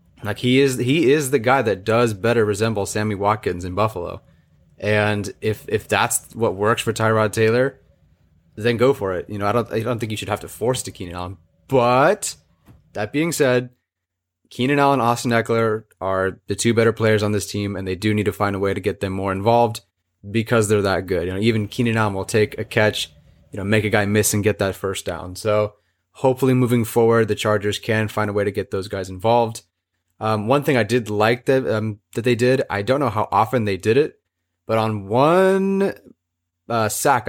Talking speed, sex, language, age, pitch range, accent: 215 wpm, male, English, 30-49, 100-115 Hz, American